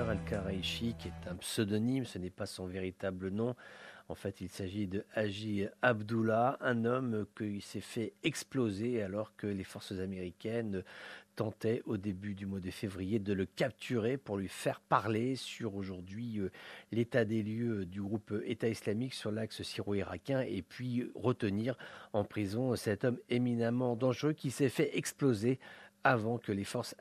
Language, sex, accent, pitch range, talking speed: English, male, French, 100-125 Hz, 160 wpm